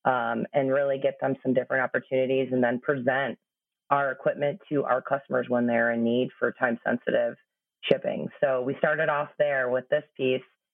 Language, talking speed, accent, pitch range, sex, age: English, 175 wpm, American, 130-145 Hz, female, 30-49